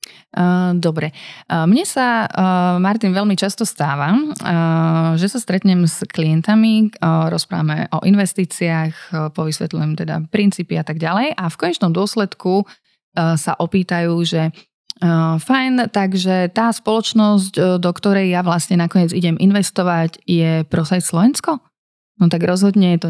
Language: Slovak